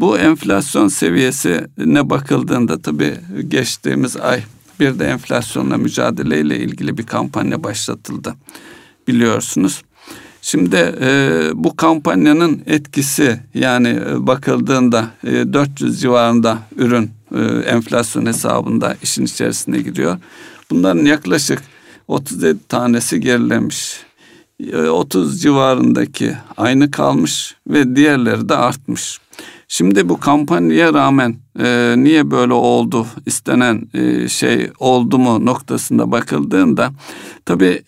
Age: 60-79